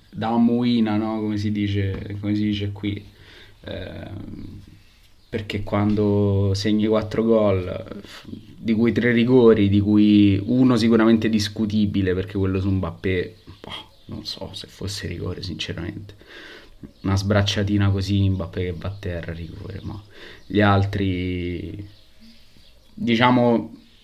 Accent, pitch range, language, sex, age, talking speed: native, 95-110 Hz, Italian, male, 20-39, 125 wpm